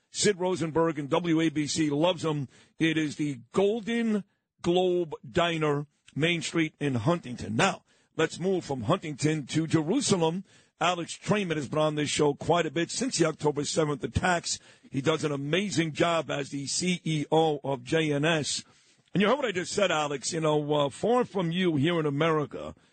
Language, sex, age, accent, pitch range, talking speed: English, male, 50-69, American, 150-175 Hz, 170 wpm